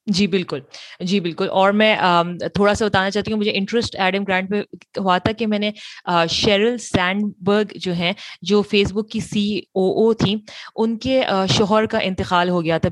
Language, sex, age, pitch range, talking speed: Urdu, female, 30-49, 175-210 Hz, 190 wpm